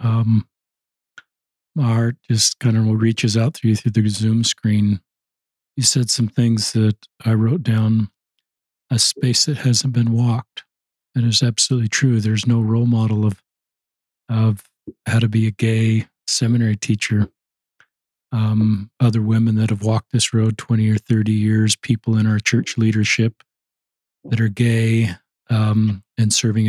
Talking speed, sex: 155 wpm, male